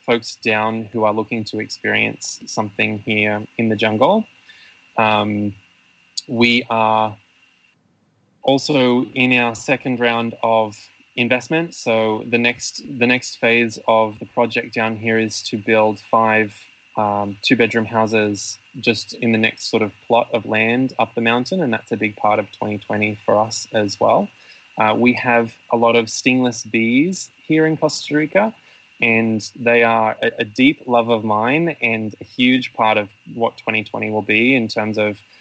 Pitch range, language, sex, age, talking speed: 110-120 Hz, English, male, 20-39, 160 wpm